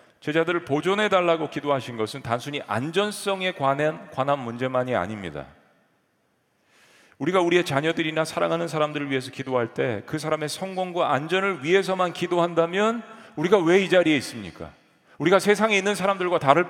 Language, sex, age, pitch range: Korean, male, 40-59, 140-190 Hz